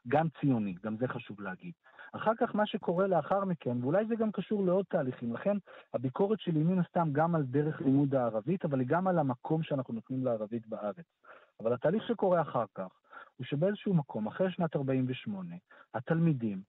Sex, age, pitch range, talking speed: male, 40-59, 130-190 Hz, 180 wpm